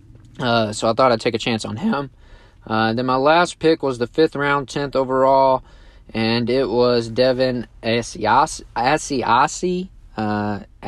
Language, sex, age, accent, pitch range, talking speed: English, male, 20-39, American, 110-130 Hz, 150 wpm